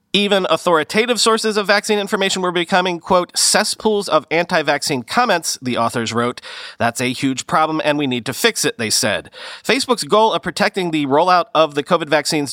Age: 40-59